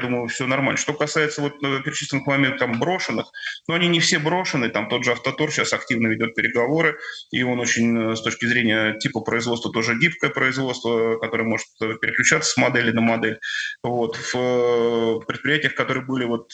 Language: Russian